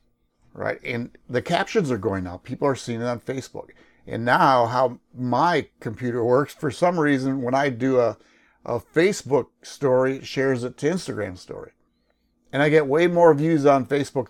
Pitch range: 110-145 Hz